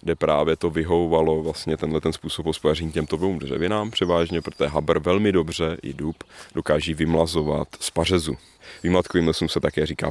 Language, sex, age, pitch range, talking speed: Czech, male, 30-49, 75-90 Hz, 165 wpm